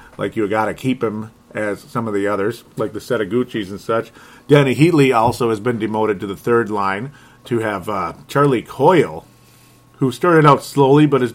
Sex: male